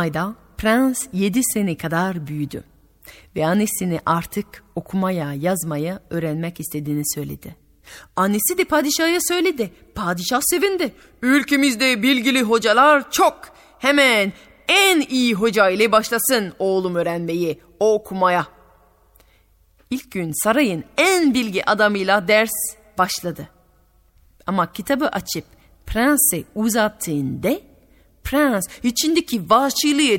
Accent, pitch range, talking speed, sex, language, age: native, 175-280 Hz, 95 wpm, female, Turkish, 30-49